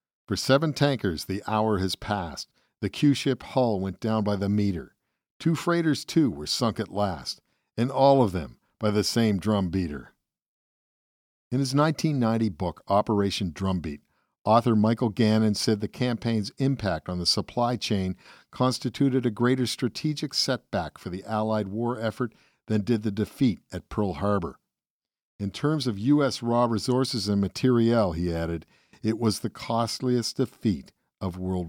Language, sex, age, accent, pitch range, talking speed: English, male, 50-69, American, 100-125 Hz, 155 wpm